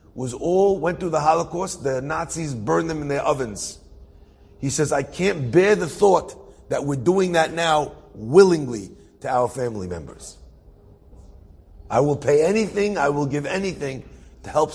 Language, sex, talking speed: English, male, 165 wpm